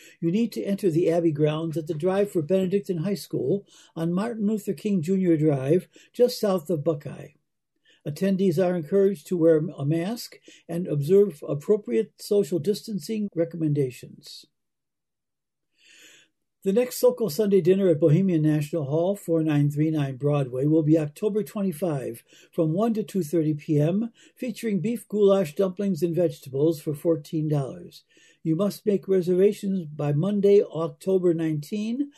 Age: 60-79